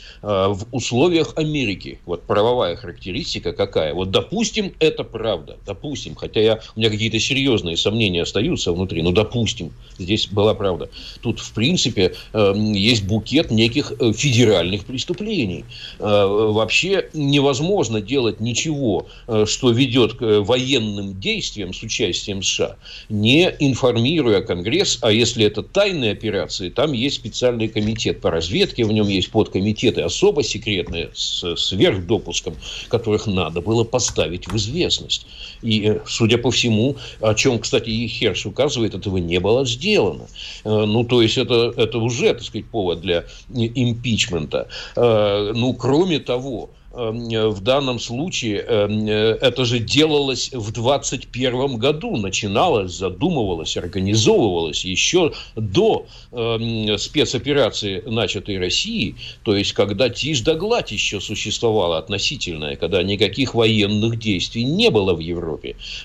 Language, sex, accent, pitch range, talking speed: Russian, male, native, 105-125 Hz, 125 wpm